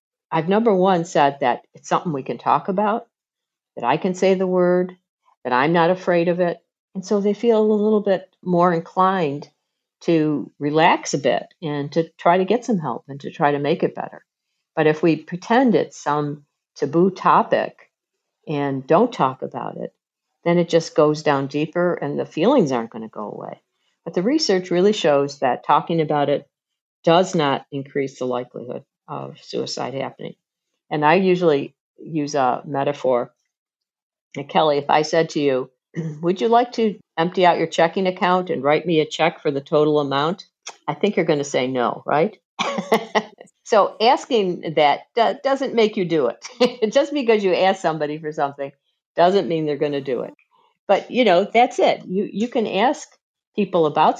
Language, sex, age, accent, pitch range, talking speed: English, female, 50-69, American, 150-195 Hz, 185 wpm